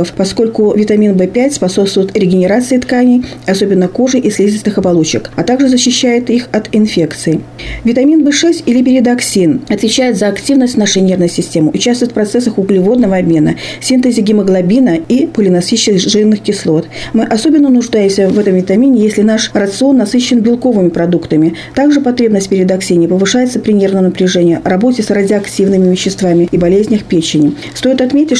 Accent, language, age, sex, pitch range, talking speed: native, Russian, 40-59, female, 185-240 Hz, 145 wpm